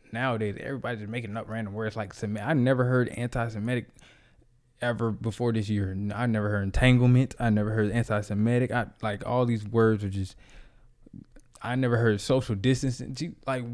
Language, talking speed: English, 165 wpm